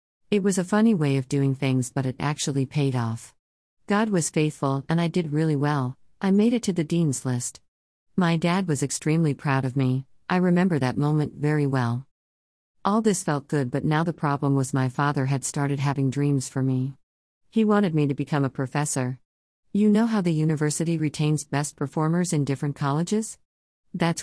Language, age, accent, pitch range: English, 50-69, American, 135-170 Hz